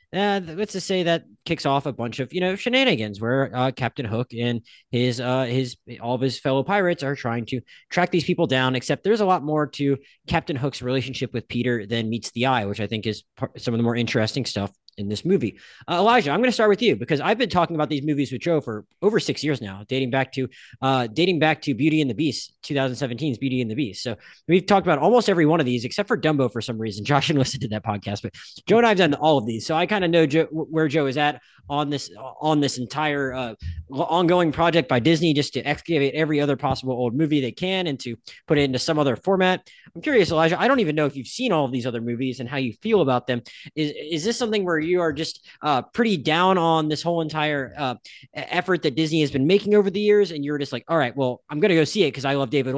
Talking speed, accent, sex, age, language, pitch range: 260 wpm, American, male, 30-49, English, 125-170 Hz